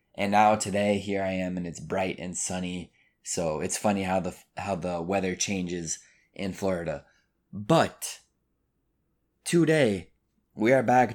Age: 20-39